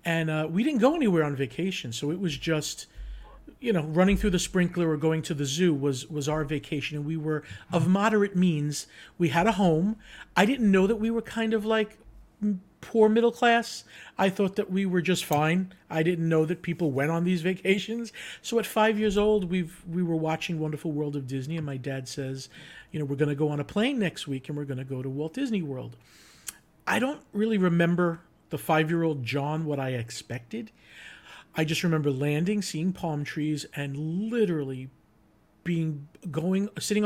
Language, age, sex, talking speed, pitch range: English, 50-69, male, 200 wpm, 145-185 Hz